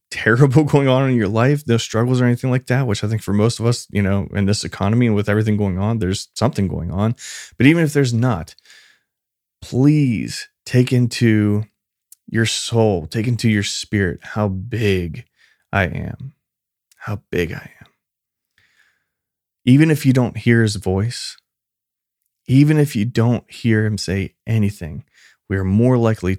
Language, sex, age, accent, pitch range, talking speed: English, male, 20-39, American, 95-120 Hz, 170 wpm